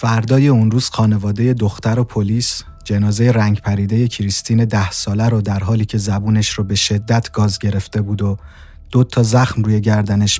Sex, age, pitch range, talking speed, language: male, 30-49, 105-125 Hz, 175 wpm, Persian